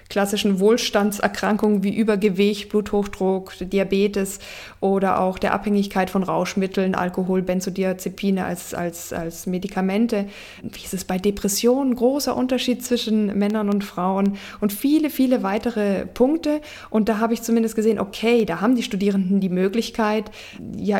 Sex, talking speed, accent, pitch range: female, 135 wpm, German, 190-230 Hz